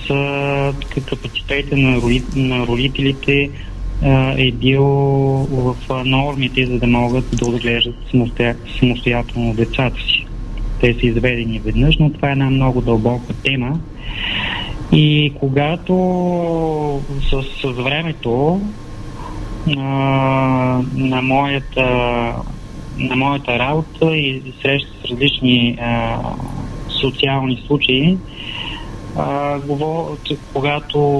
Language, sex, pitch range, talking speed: Bulgarian, male, 120-145 Hz, 85 wpm